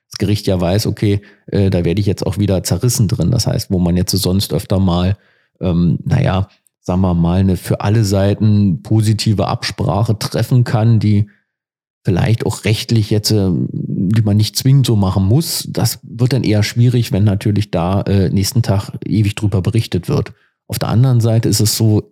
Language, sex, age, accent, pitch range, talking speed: German, male, 40-59, German, 95-115 Hz, 190 wpm